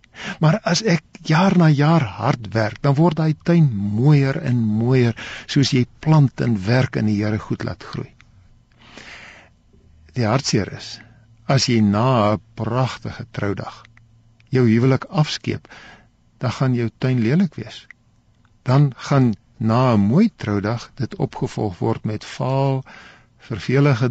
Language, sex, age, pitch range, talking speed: Dutch, male, 60-79, 110-145 Hz, 140 wpm